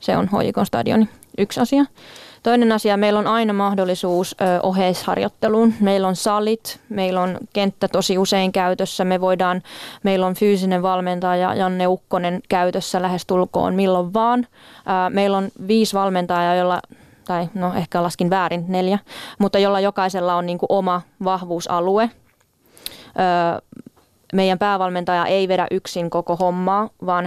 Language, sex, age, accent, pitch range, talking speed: Finnish, female, 20-39, native, 180-200 Hz, 135 wpm